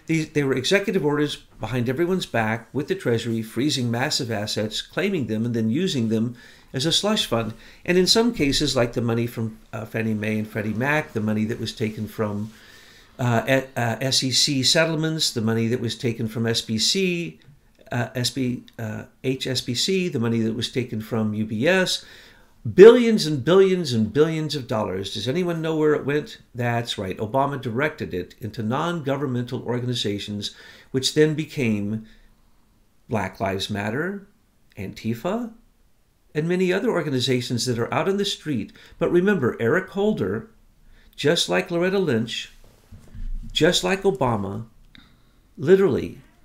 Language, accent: English, American